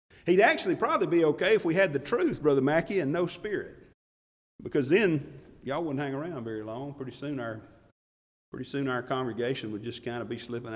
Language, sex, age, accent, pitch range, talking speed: English, male, 50-69, American, 110-140 Hz, 190 wpm